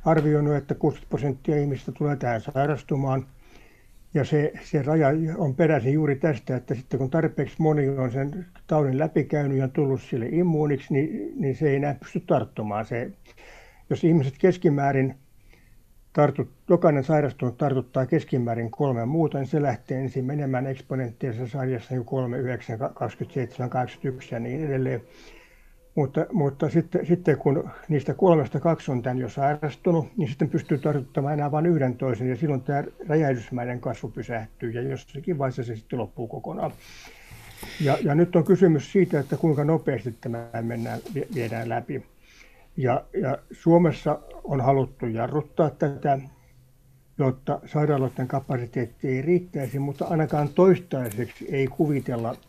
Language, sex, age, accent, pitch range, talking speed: Finnish, male, 60-79, native, 130-155 Hz, 145 wpm